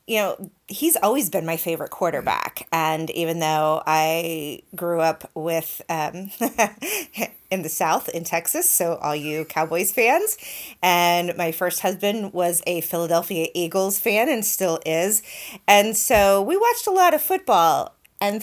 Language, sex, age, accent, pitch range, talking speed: English, female, 30-49, American, 165-220 Hz, 155 wpm